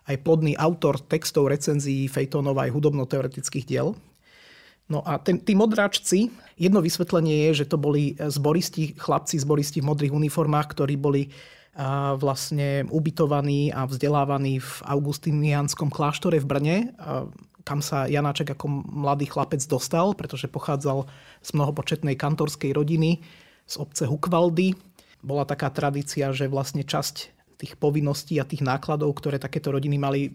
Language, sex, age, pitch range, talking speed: Slovak, male, 30-49, 140-160 Hz, 130 wpm